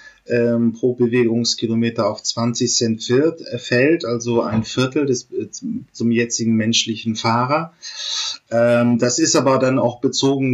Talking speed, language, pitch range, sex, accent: 120 wpm, German, 115-130 Hz, male, German